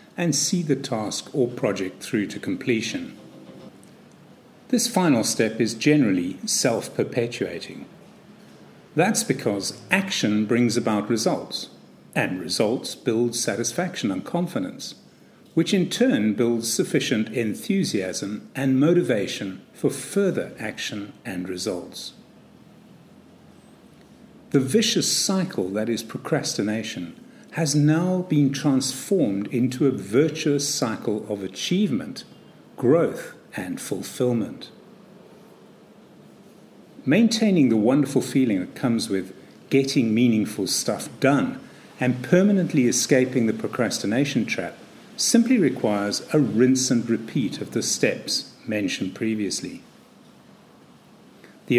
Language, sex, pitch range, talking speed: English, male, 115-190 Hz, 100 wpm